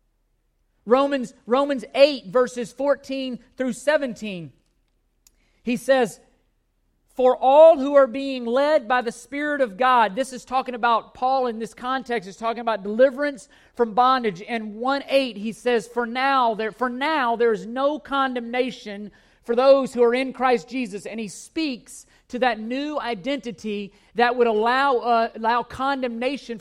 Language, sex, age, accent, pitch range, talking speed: English, male, 40-59, American, 225-270 Hz, 150 wpm